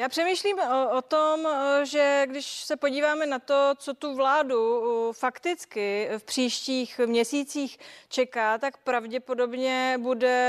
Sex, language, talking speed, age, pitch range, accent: female, Czech, 125 wpm, 30-49, 225-260 Hz, native